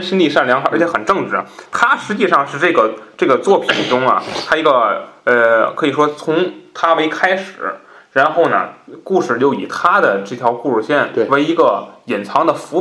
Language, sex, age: Chinese, male, 20-39